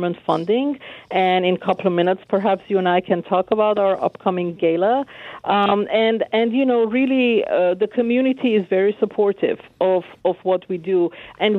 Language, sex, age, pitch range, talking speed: English, female, 50-69, 175-210 Hz, 180 wpm